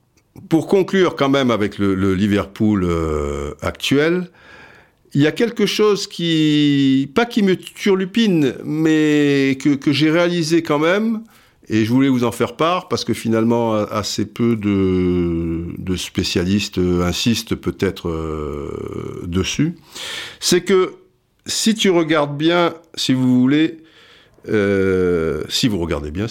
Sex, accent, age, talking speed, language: male, French, 50-69, 135 wpm, French